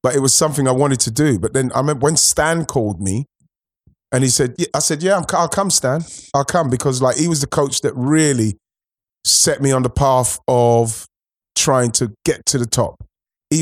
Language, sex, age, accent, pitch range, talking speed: English, male, 30-49, British, 120-145 Hz, 210 wpm